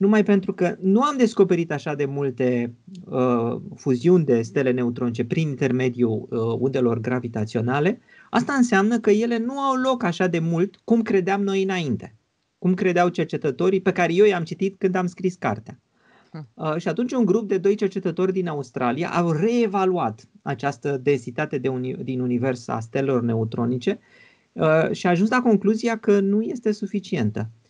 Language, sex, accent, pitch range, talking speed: Romanian, male, native, 130-205 Hz, 165 wpm